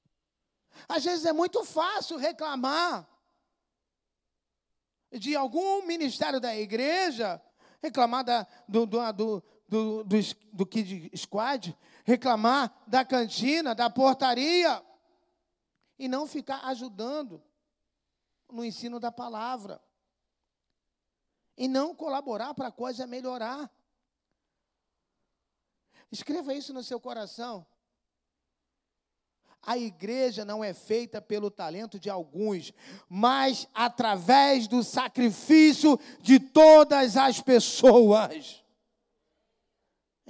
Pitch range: 210-270 Hz